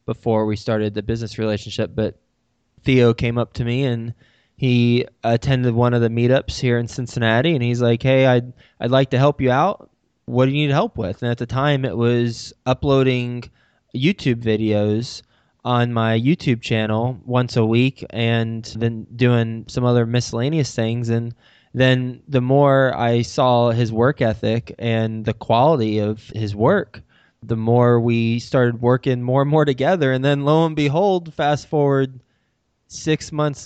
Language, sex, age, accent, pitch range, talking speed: English, male, 20-39, American, 115-135 Hz, 170 wpm